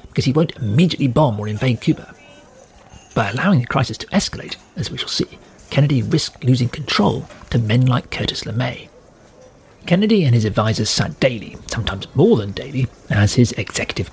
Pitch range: 115-155 Hz